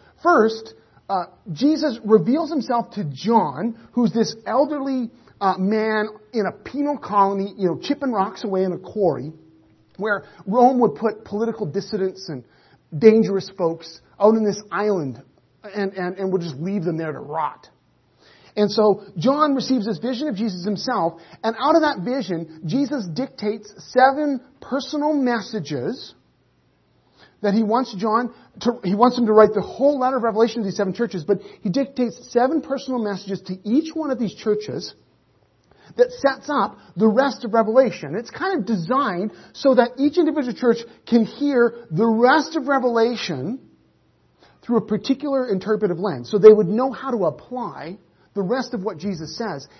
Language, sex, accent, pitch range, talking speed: English, male, American, 190-245 Hz, 165 wpm